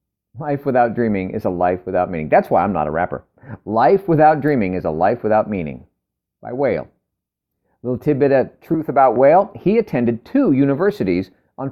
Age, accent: 50-69, American